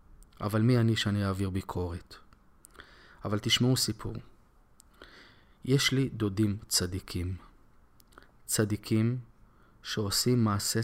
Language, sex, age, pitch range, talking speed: Hebrew, male, 20-39, 100-115 Hz, 90 wpm